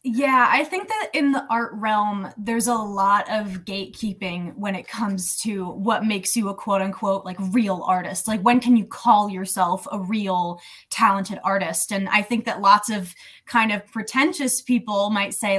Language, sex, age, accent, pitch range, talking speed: English, female, 20-39, American, 195-235 Hz, 180 wpm